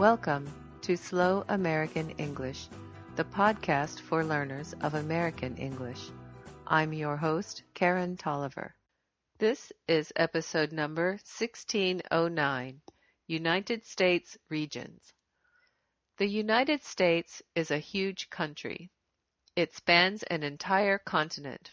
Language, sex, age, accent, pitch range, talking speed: English, female, 50-69, American, 150-185 Hz, 100 wpm